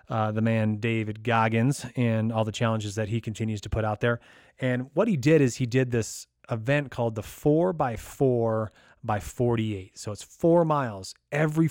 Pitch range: 105-130 Hz